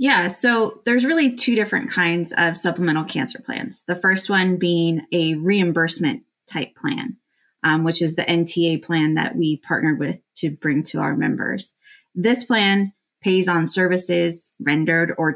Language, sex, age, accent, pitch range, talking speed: English, female, 20-39, American, 160-180 Hz, 160 wpm